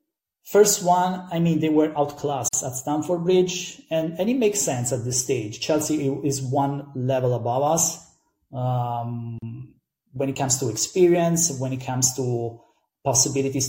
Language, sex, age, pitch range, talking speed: English, male, 30-49, 130-165 Hz, 155 wpm